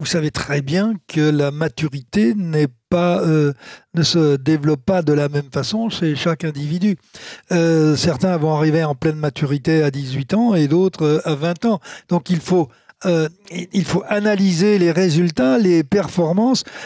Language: French